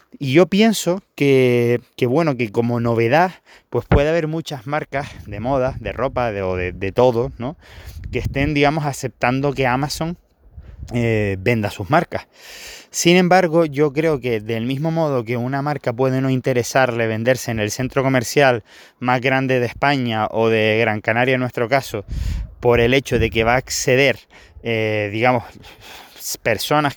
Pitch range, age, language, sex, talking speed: 115-145 Hz, 20-39, Spanish, male, 165 wpm